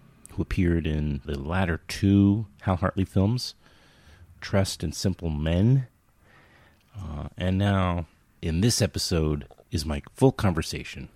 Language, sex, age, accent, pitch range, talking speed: English, male, 30-49, American, 75-100 Hz, 125 wpm